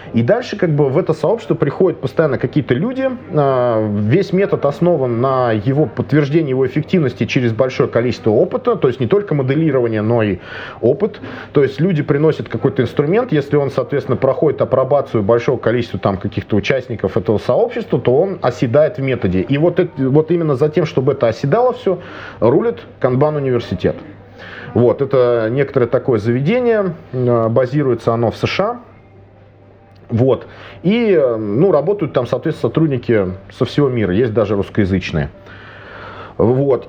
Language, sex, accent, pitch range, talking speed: Russian, male, native, 110-150 Hz, 145 wpm